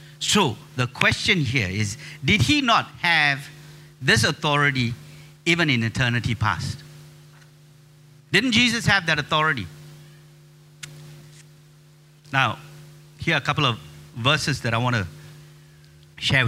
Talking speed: 115 wpm